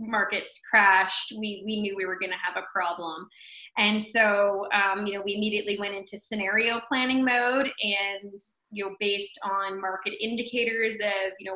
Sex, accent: female, American